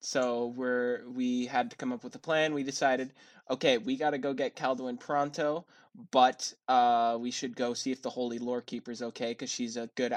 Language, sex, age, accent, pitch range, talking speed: English, male, 10-29, American, 120-130 Hz, 200 wpm